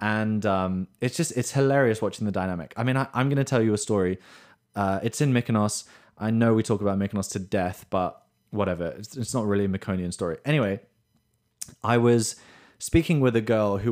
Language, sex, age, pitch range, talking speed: English, male, 20-39, 105-125 Hz, 205 wpm